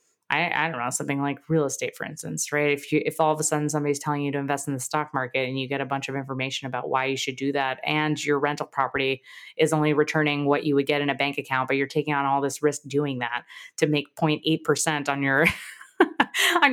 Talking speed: 250 wpm